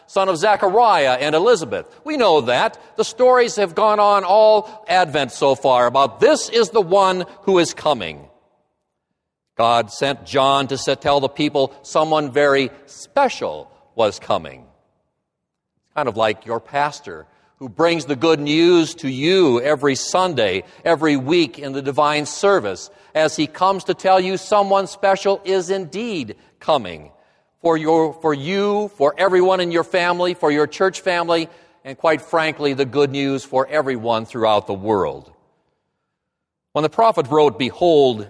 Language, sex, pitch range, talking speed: English, male, 145-200 Hz, 150 wpm